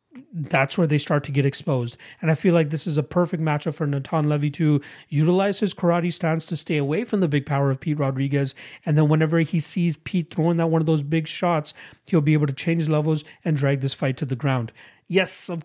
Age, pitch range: 30-49, 145-170 Hz